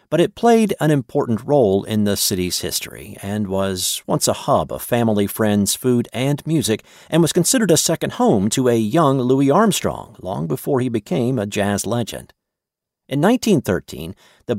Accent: American